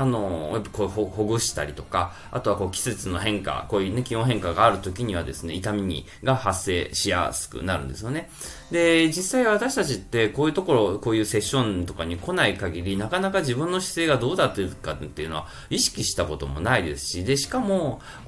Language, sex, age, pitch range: Japanese, male, 20-39, 95-135 Hz